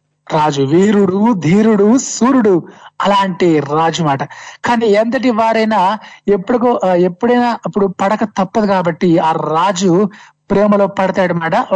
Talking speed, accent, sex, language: 105 wpm, native, male, Telugu